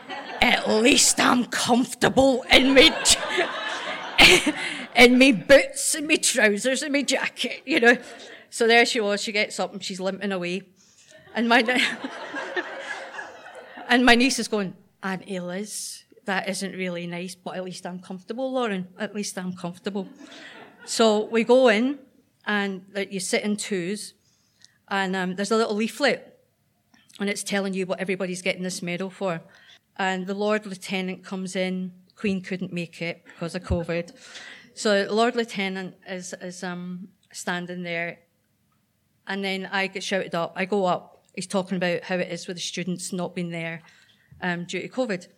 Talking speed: 165 wpm